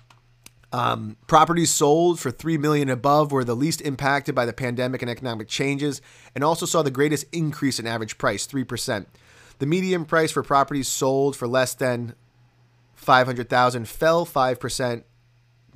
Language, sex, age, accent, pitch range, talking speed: English, male, 30-49, American, 120-140 Hz, 150 wpm